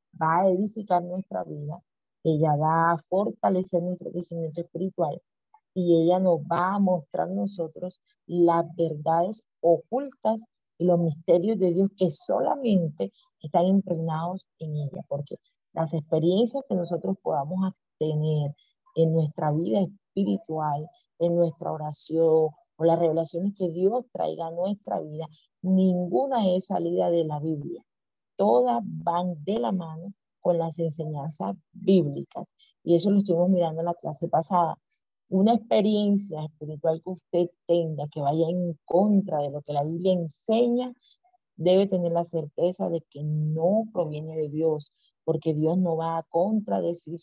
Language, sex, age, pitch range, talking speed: Spanish, female, 40-59, 160-185 Hz, 140 wpm